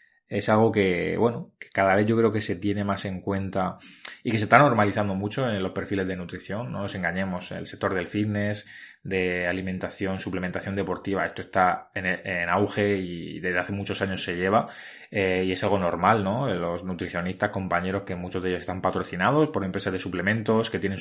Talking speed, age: 200 wpm, 20-39